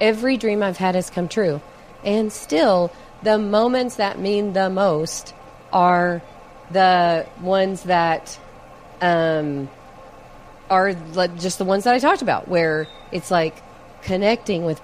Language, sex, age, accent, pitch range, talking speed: English, female, 40-59, American, 175-210 Hz, 135 wpm